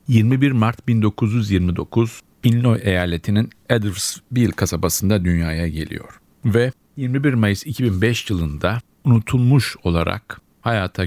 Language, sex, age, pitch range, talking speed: Turkish, male, 50-69, 85-115 Hz, 90 wpm